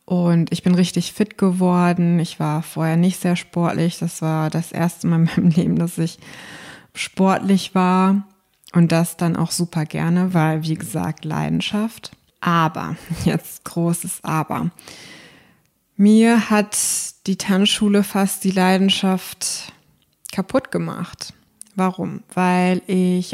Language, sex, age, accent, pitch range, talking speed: German, female, 20-39, German, 165-185 Hz, 130 wpm